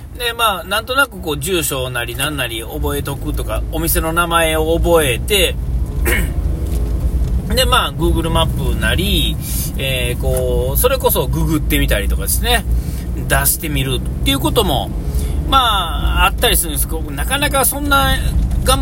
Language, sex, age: Japanese, male, 40-59